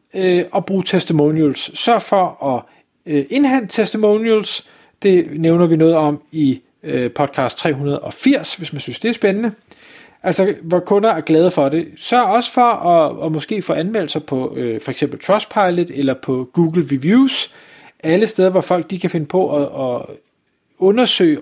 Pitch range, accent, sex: 150-205 Hz, native, male